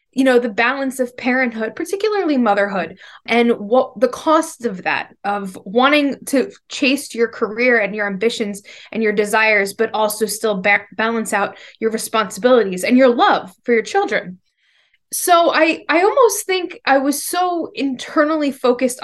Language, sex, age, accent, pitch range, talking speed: English, female, 20-39, American, 215-275 Hz, 160 wpm